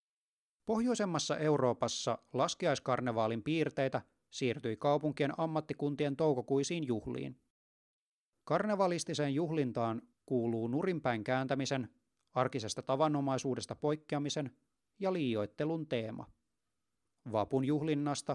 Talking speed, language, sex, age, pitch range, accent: 70 wpm, Finnish, male, 30-49, 125-155 Hz, native